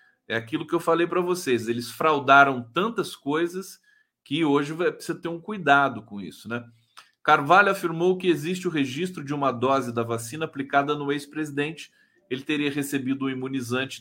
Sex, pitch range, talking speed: male, 130-175 Hz, 165 wpm